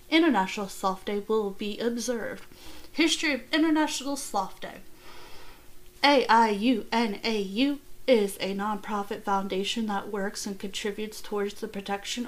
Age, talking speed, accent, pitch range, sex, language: 30-49, 110 wpm, American, 205-255 Hz, female, English